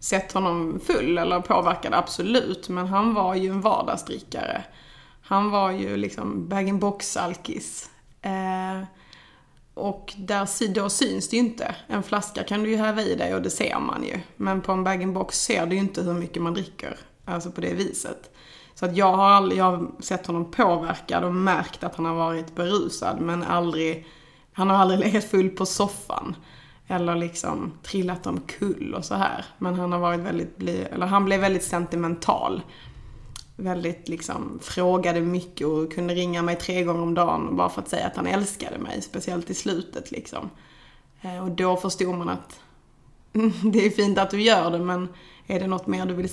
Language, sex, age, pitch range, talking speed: Swedish, female, 20-39, 175-200 Hz, 185 wpm